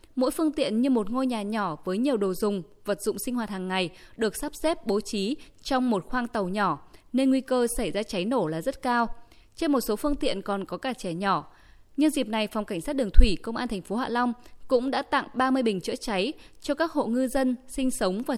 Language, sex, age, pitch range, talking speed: Vietnamese, female, 20-39, 195-265 Hz, 250 wpm